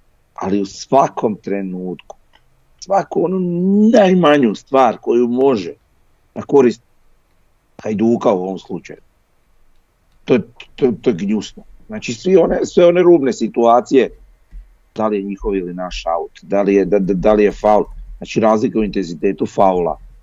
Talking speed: 130 wpm